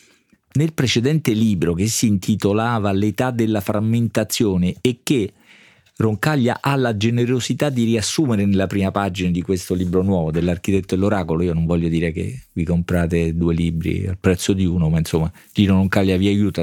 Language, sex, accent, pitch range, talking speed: Italian, male, native, 95-125 Hz, 160 wpm